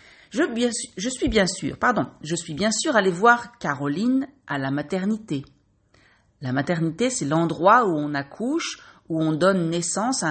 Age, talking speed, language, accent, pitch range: 40-59, 170 wpm, French, French, 140-210 Hz